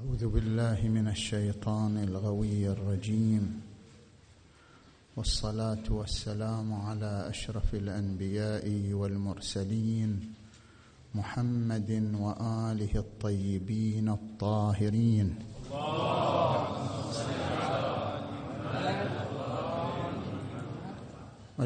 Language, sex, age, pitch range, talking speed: Arabic, male, 50-69, 100-110 Hz, 45 wpm